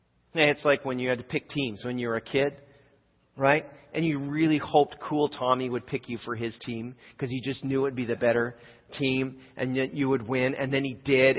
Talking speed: 235 wpm